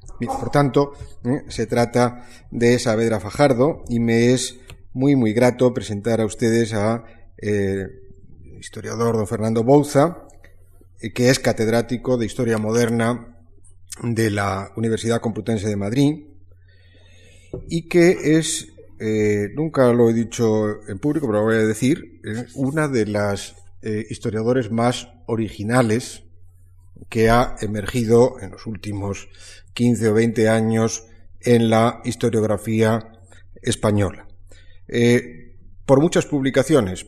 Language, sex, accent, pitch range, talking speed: Spanish, male, Spanish, 100-120 Hz, 120 wpm